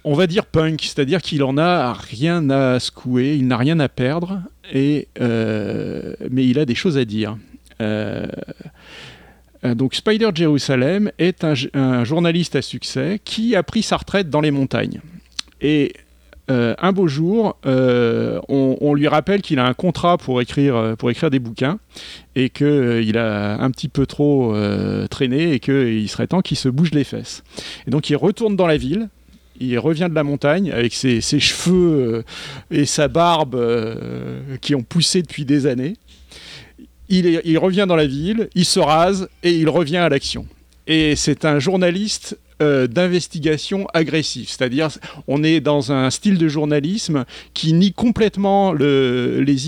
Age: 40-59